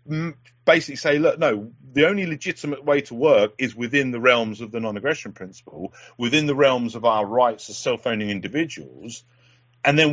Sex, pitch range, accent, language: male, 115-145 Hz, British, Czech